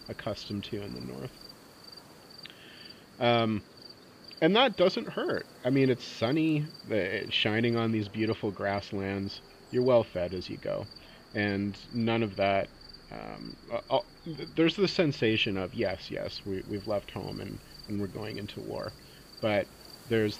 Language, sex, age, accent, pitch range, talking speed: English, male, 30-49, American, 100-115 Hz, 145 wpm